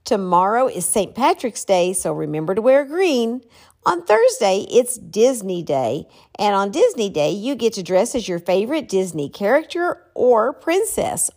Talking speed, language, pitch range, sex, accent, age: 160 wpm, English, 185-280 Hz, female, American, 50-69